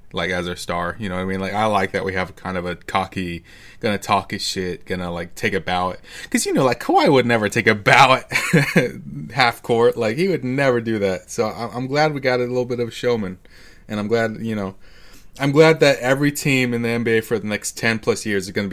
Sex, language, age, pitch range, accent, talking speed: male, English, 20-39, 95-115 Hz, American, 245 wpm